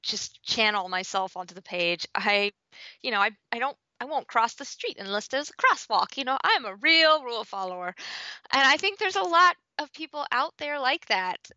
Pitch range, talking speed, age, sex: 195-250 Hz, 205 wpm, 20-39, female